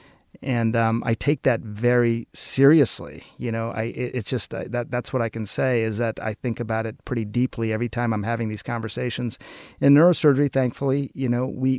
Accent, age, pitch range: American, 40-59, 110-125 Hz